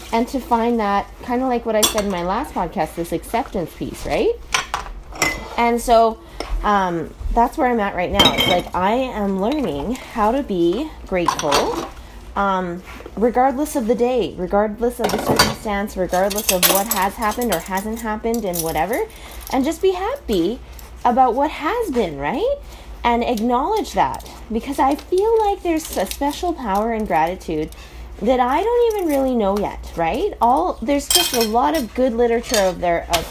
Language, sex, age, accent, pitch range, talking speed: English, female, 20-39, American, 195-265 Hz, 170 wpm